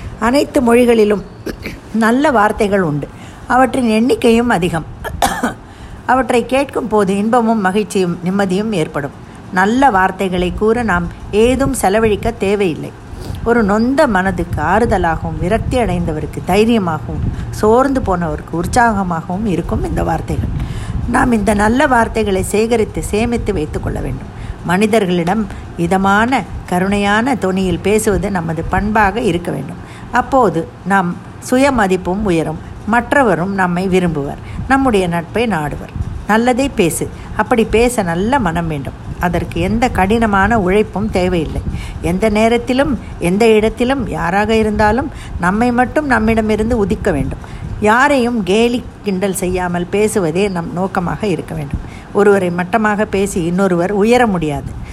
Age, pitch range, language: 50-69, 185-235 Hz, Tamil